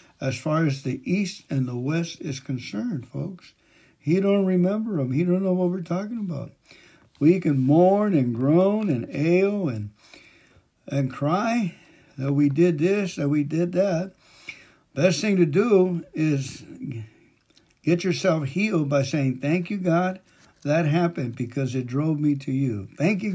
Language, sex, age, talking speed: English, male, 60-79, 160 wpm